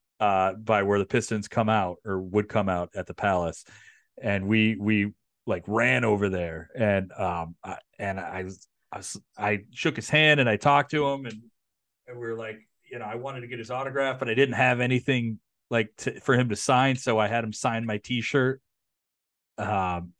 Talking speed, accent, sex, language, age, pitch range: 210 wpm, American, male, English, 30-49, 95-130 Hz